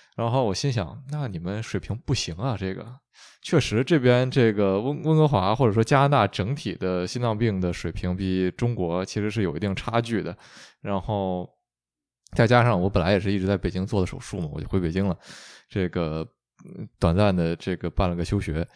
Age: 20-39